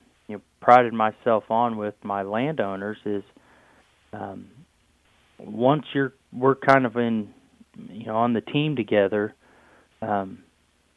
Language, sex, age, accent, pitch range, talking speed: English, male, 30-49, American, 100-120 Hz, 115 wpm